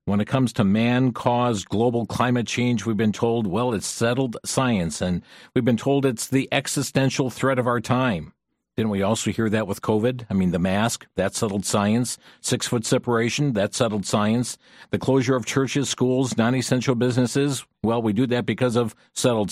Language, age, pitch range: English, 50-69, 110-140 Hz